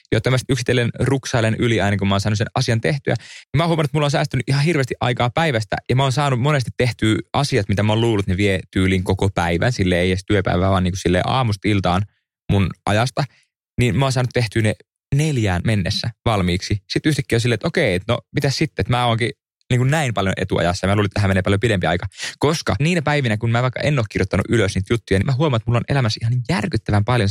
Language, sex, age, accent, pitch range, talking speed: English, male, 20-39, Finnish, 100-135 Hz, 230 wpm